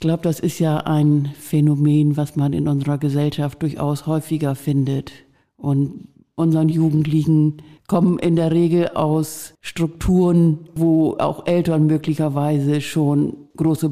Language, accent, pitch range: German, German, 145-160 Hz